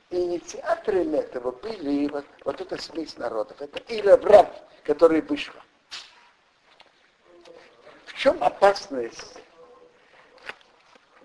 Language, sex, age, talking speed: Russian, male, 60-79, 80 wpm